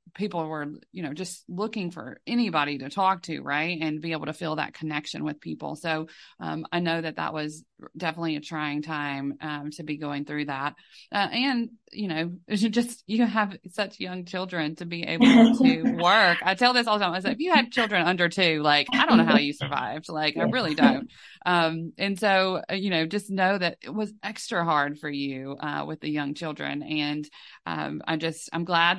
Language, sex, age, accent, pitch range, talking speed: English, female, 30-49, American, 155-190 Hz, 215 wpm